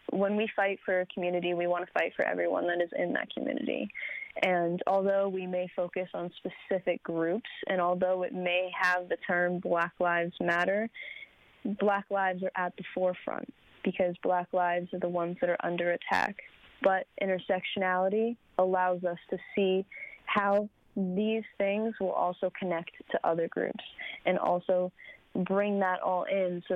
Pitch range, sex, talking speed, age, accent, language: 180-205 Hz, female, 165 wpm, 20-39, American, English